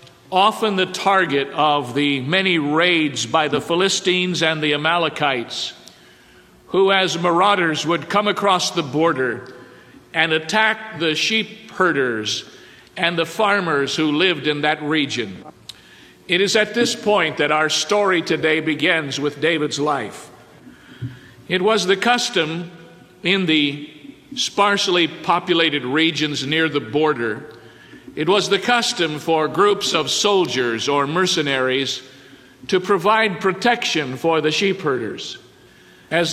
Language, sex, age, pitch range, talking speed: English, male, 50-69, 155-195 Hz, 125 wpm